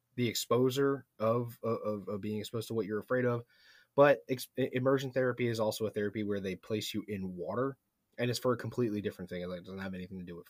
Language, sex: English, male